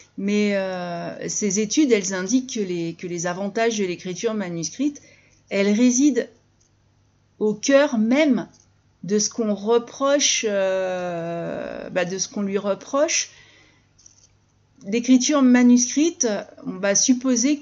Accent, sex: French, female